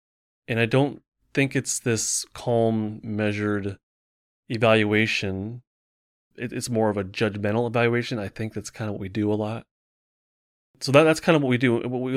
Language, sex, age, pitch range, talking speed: English, male, 30-49, 100-125 Hz, 170 wpm